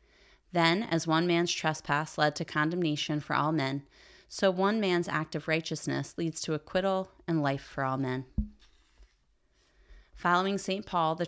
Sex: female